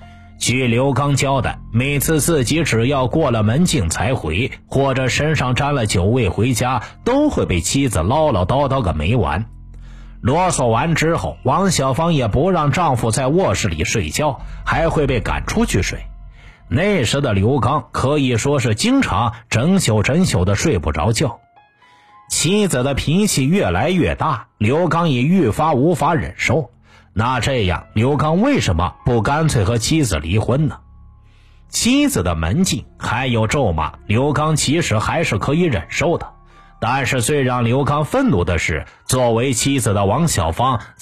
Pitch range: 105-150 Hz